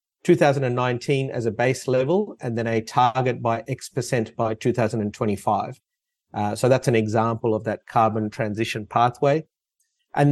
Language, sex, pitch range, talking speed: English, male, 115-135 Hz, 145 wpm